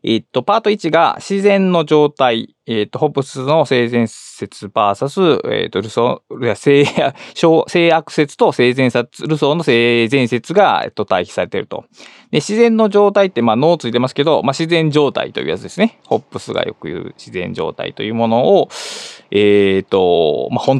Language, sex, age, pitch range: Japanese, male, 20-39, 125-185 Hz